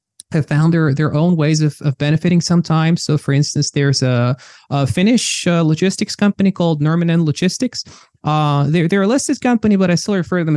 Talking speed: 200 wpm